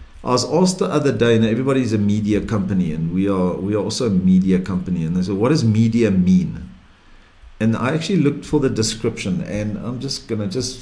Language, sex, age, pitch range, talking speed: English, male, 50-69, 100-145 Hz, 215 wpm